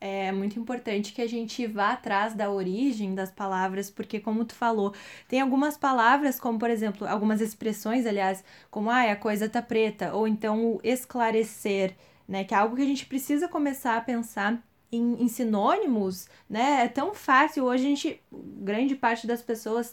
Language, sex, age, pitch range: Portuguese, female, 10-29, 215-255 Hz